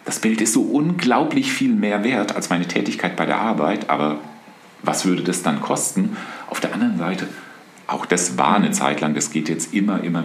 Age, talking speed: 40-59, 205 wpm